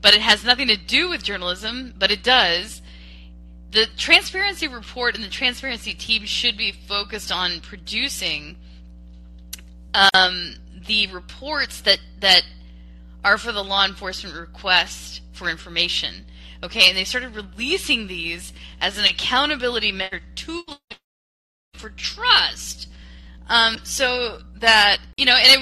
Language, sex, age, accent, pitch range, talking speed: English, female, 20-39, American, 170-275 Hz, 130 wpm